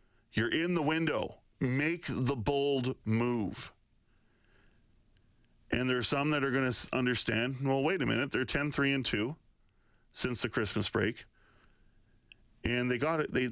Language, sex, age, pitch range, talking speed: English, male, 40-59, 110-130 Hz, 155 wpm